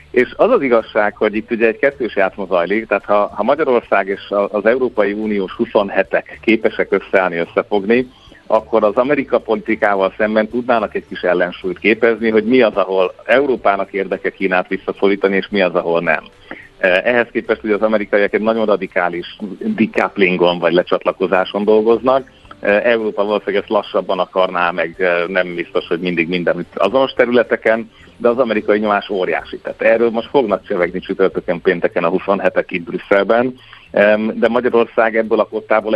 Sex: male